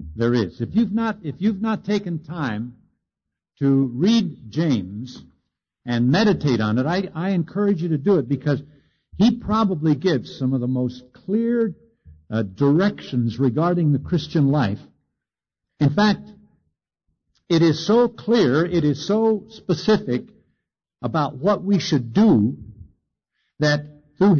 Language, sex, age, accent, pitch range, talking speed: English, male, 60-79, American, 135-200 Hz, 140 wpm